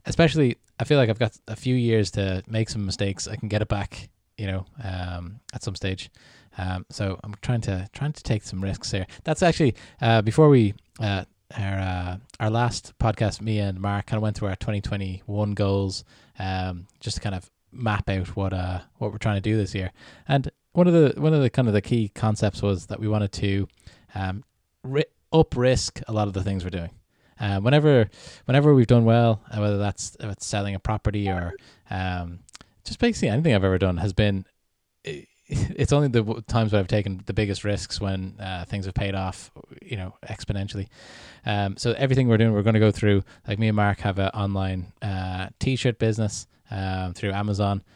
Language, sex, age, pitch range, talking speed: English, male, 20-39, 95-115 Hz, 205 wpm